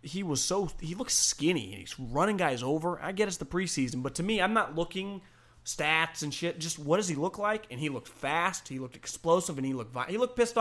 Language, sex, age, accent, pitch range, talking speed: English, male, 30-49, American, 135-200 Hz, 250 wpm